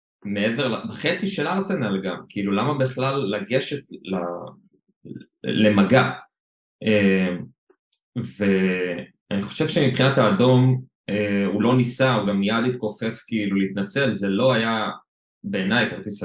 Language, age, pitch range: Hebrew, 20-39, 95-130 Hz